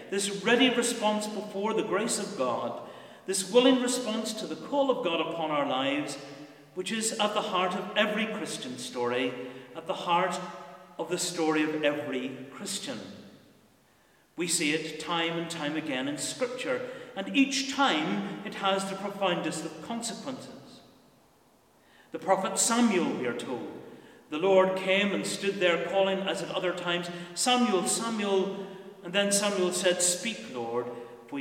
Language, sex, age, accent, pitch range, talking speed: English, male, 40-59, British, 155-210 Hz, 155 wpm